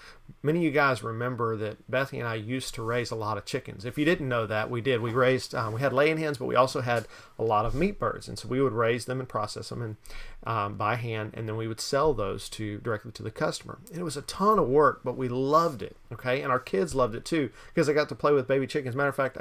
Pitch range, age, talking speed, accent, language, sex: 110-145 Hz, 40-59, 285 wpm, American, English, male